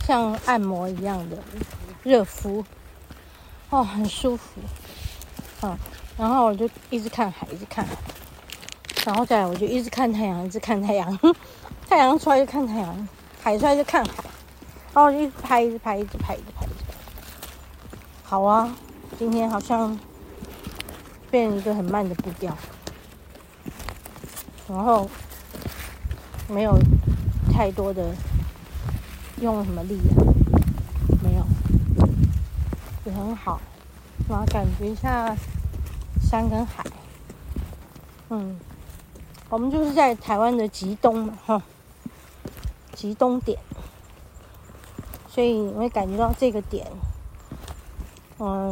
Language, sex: Chinese, female